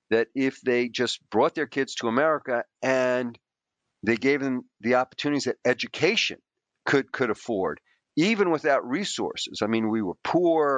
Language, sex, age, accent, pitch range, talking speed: English, male, 50-69, American, 115-145 Hz, 155 wpm